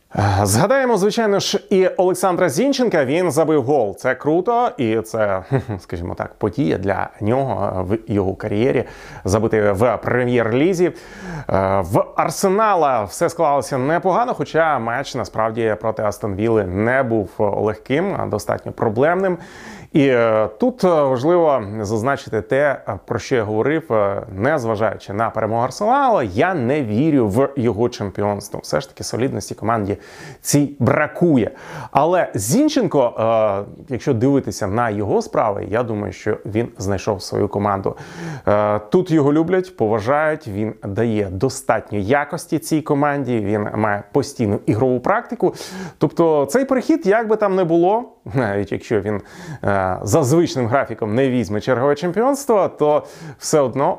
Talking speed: 130 wpm